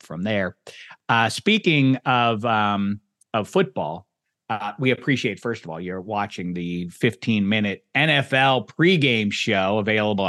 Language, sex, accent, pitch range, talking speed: English, male, American, 105-130 Hz, 135 wpm